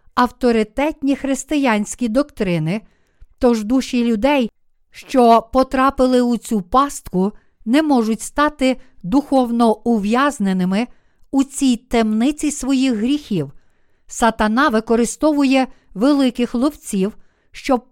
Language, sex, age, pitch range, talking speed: Ukrainian, female, 50-69, 215-265 Hz, 85 wpm